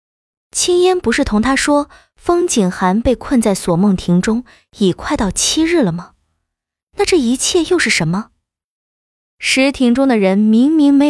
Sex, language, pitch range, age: female, Chinese, 185-290 Hz, 20-39